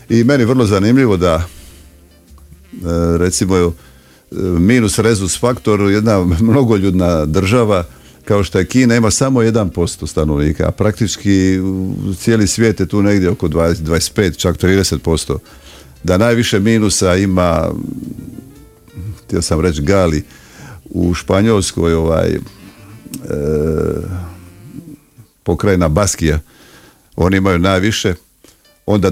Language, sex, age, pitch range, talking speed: Croatian, male, 50-69, 85-115 Hz, 105 wpm